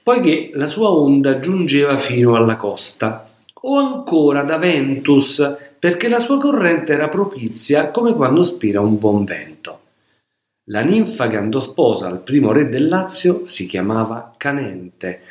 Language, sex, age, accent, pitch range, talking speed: Italian, male, 50-69, native, 110-175 Hz, 145 wpm